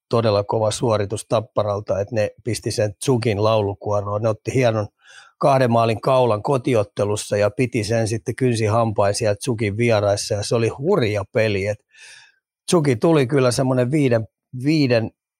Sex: male